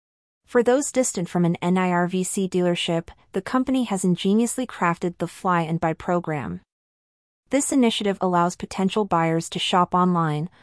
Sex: female